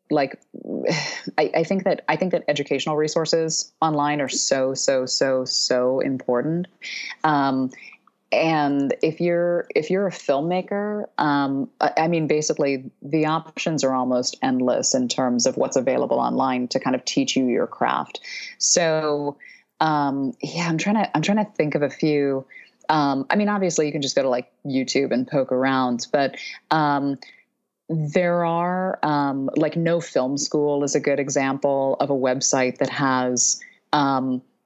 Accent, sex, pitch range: American, female, 135-160 Hz